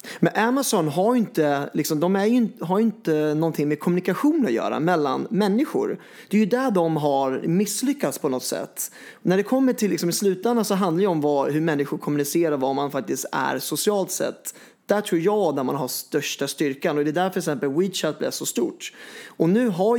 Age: 30-49